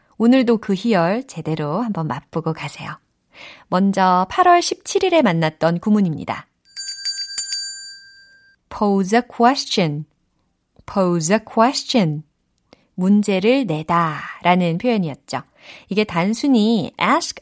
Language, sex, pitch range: Korean, female, 170-265 Hz